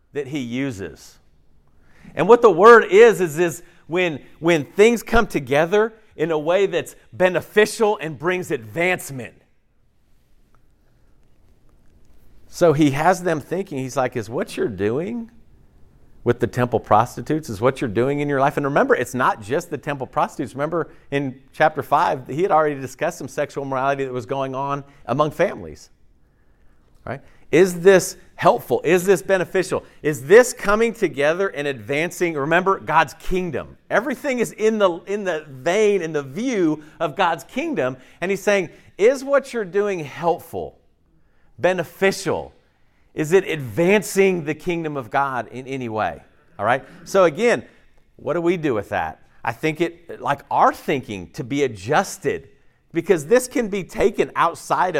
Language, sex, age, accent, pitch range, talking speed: English, male, 50-69, American, 130-195 Hz, 155 wpm